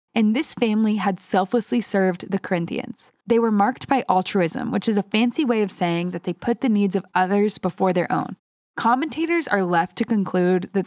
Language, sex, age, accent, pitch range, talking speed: English, female, 10-29, American, 185-235 Hz, 200 wpm